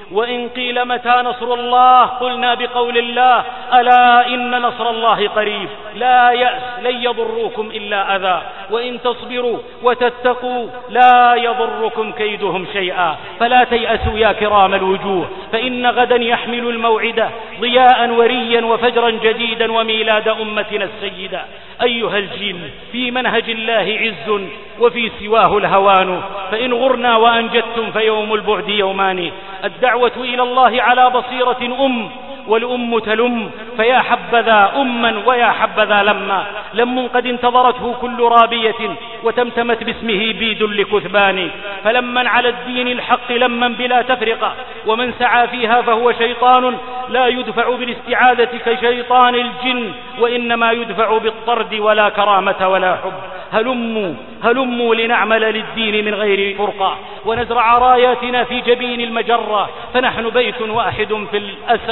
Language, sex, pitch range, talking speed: Arabic, male, 215-245 Hz, 115 wpm